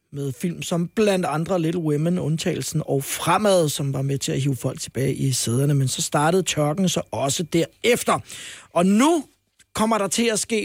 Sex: male